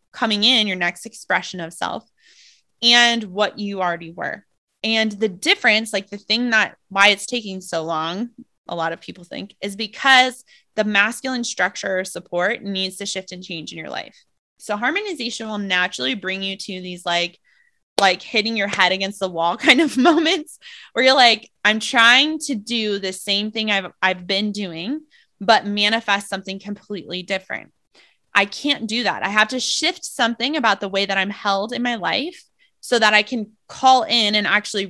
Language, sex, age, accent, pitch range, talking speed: English, female, 20-39, American, 185-245 Hz, 185 wpm